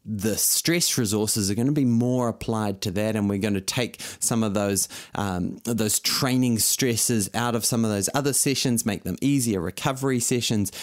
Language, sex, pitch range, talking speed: English, male, 100-130 Hz, 195 wpm